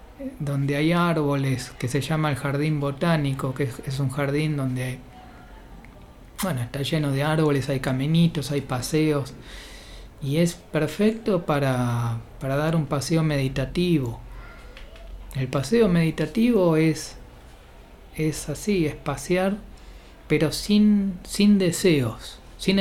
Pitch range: 130-175 Hz